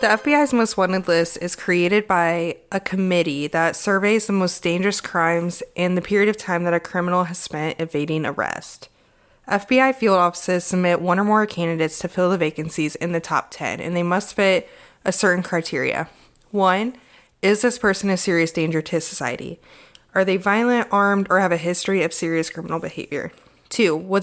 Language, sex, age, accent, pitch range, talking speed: English, female, 20-39, American, 165-200 Hz, 185 wpm